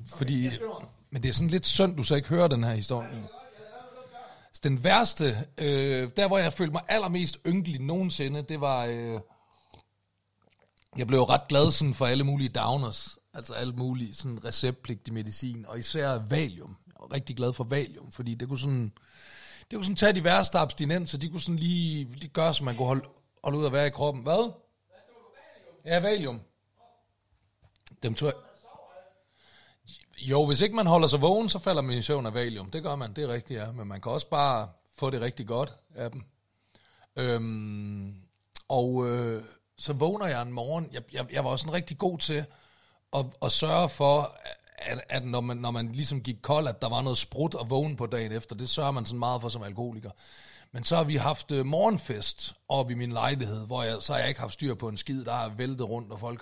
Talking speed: 205 wpm